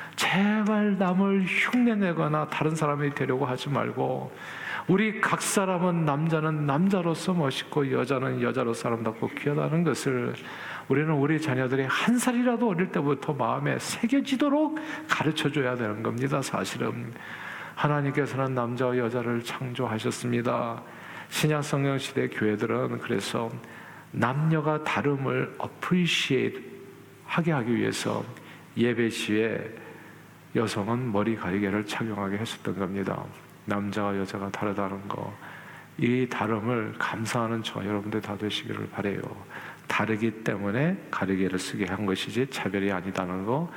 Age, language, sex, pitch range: 50-69, Korean, male, 105-150 Hz